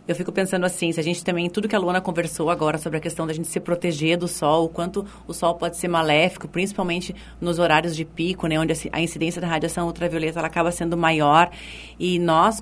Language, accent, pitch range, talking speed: Portuguese, Brazilian, 165-205 Hz, 230 wpm